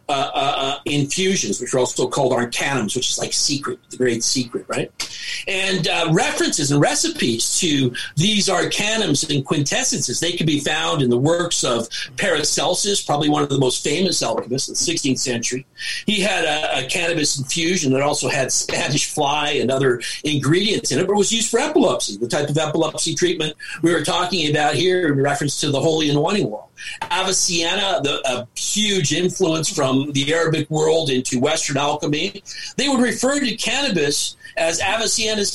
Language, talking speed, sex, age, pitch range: English, 175 wpm, male, 50-69, 135-175 Hz